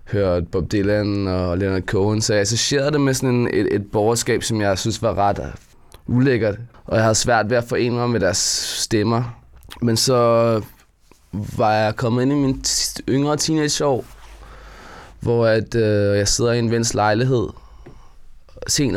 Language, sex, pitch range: Danish, male, 100-120 Hz